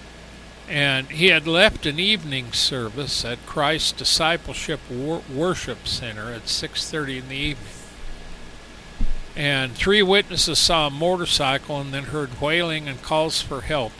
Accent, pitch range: American, 125-155 Hz